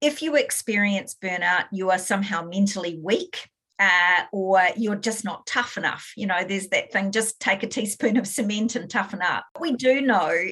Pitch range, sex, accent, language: 185-230 Hz, female, Australian, English